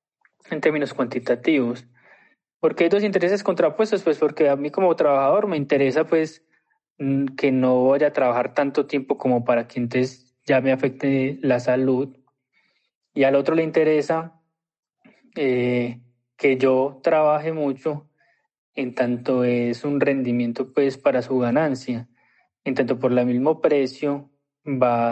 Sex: male